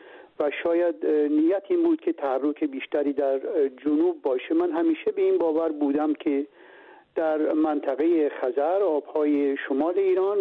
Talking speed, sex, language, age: 140 wpm, male, Persian, 60-79